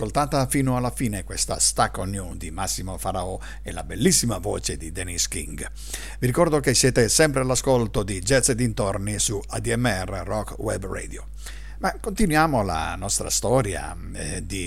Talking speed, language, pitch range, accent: 165 wpm, Italian, 95-135 Hz, native